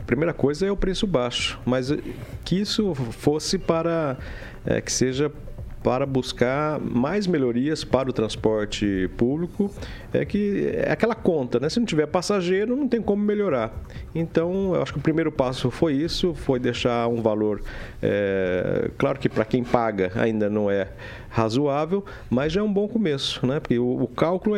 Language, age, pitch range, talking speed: Portuguese, 50-69, 120-170 Hz, 170 wpm